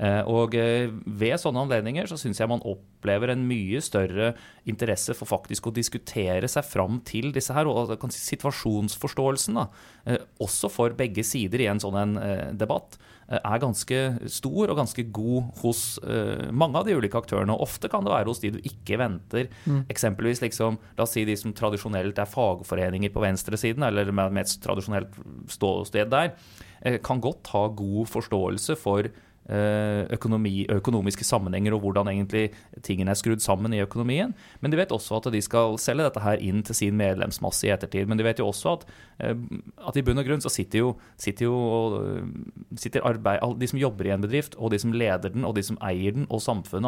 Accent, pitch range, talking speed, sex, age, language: Swedish, 100-120 Hz, 185 wpm, male, 30-49, English